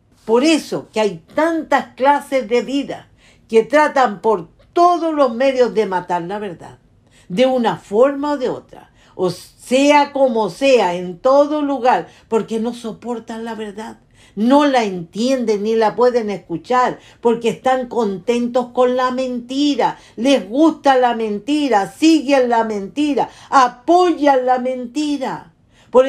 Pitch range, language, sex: 205-265 Hz, English, female